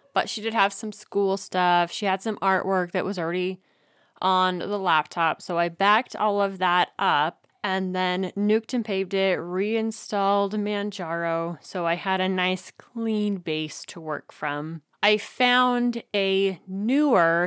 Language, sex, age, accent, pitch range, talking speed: English, female, 20-39, American, 175-210 Hz, 160 wpm